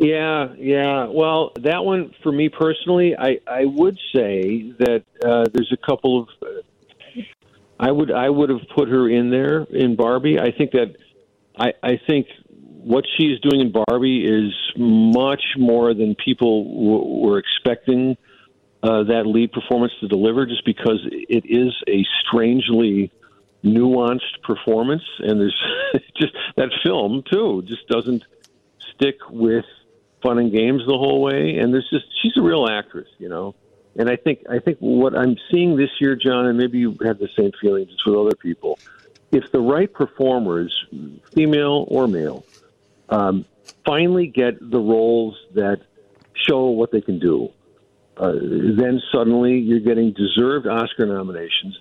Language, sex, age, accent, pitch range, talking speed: English, male, 50-69, American, 115-140 Hz, 155 wpm